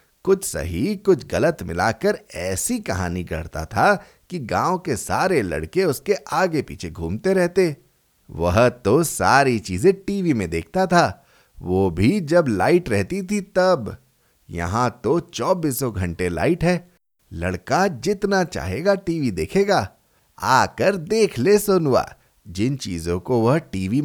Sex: male